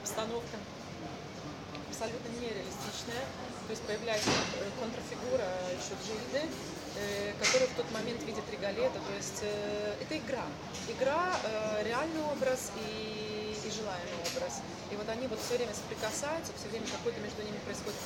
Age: 20-39